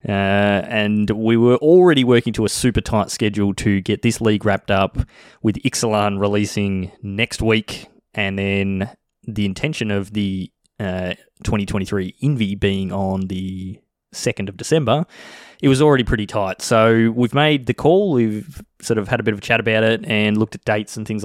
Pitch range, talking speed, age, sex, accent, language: 100-125 Hz, 180 wpm, 20-39, male, Australian, English